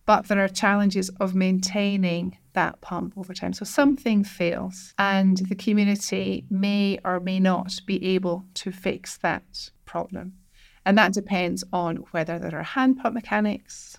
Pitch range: 185-210 Hz